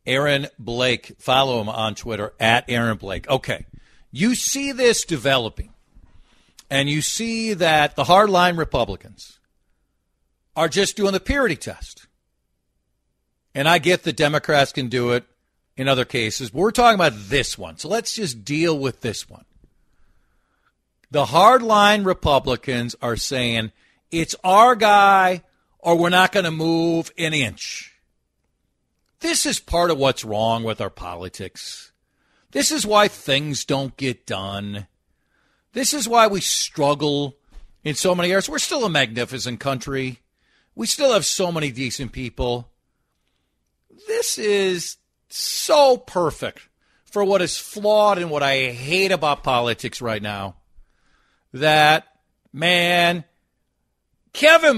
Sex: male